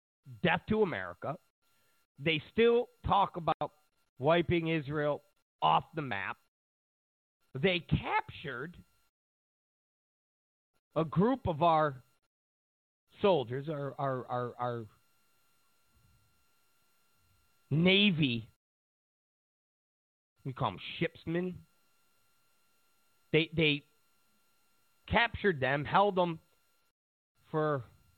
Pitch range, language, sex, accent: 140-195 Hz, English, male, American